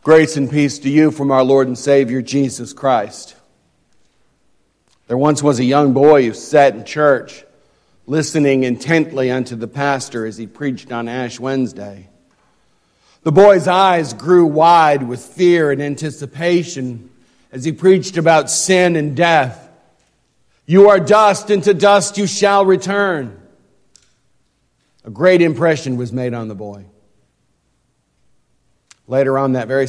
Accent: American